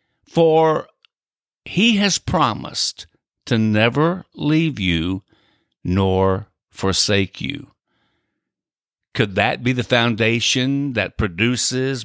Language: English